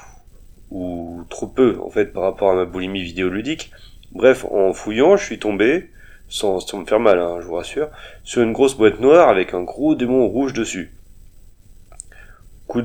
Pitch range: 95-125 Hz